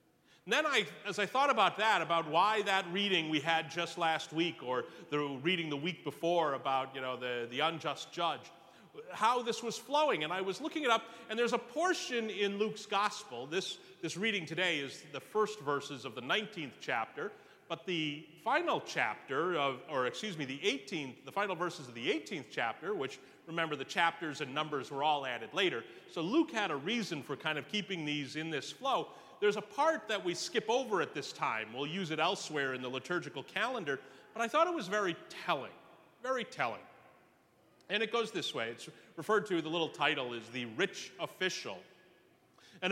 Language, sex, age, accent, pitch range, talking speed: English, male, 30-49, American, 155-220 Hz, 200 wpm